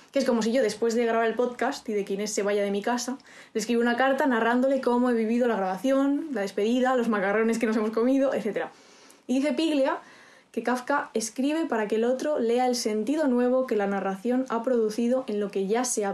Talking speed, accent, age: 225 wpm, Spanish, 20-39